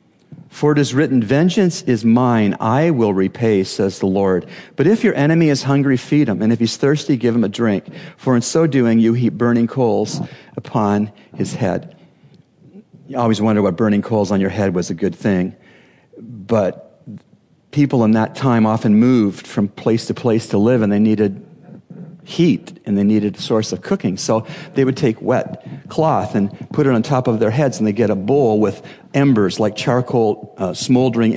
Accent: American